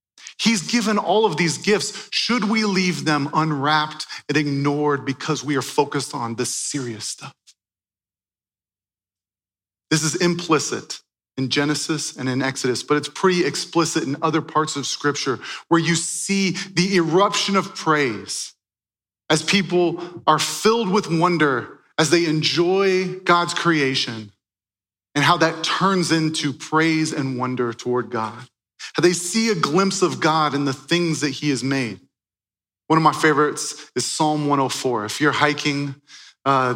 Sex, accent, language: male, American, English